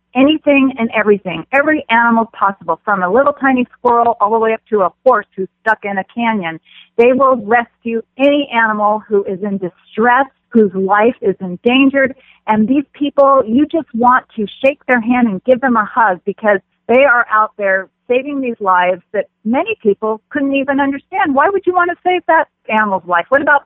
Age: 40-59